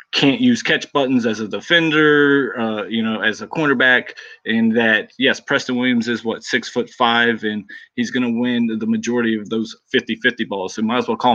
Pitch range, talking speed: 120-155 Hz, 210 wpm